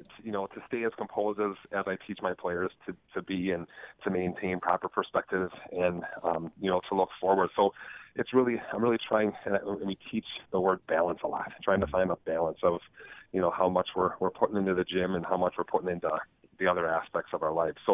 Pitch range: 90-100 Hz